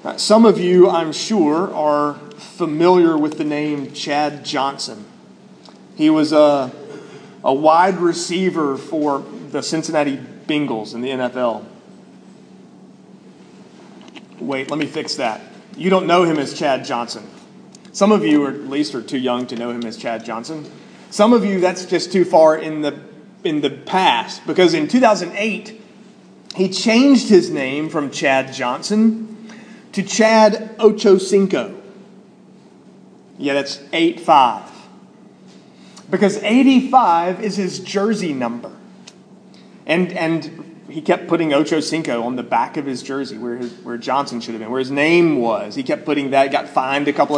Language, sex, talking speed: English, male, 155 wpm